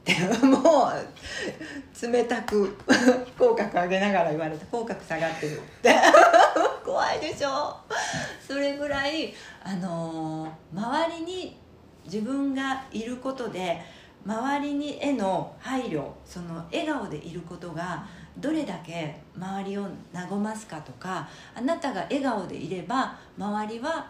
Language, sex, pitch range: Japanese, female, 165-275 Hz